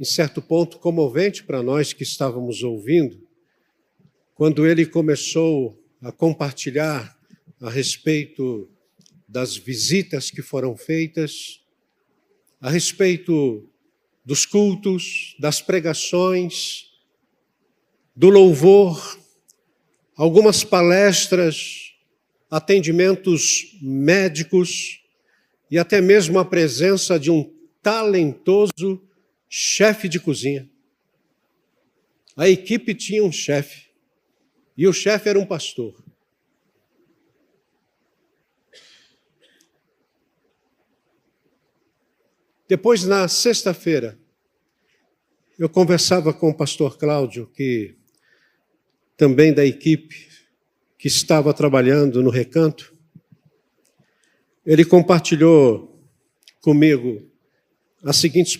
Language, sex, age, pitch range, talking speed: Portuguese, male, 60-79, 145-185 Hz, 80 wpm